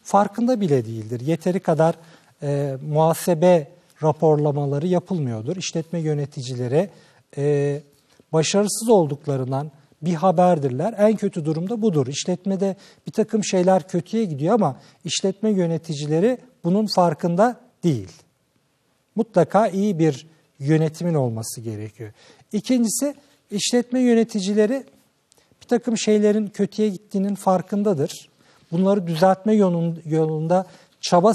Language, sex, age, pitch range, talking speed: Turkish, male, 50-69, 150-205 Hz, 95 wpm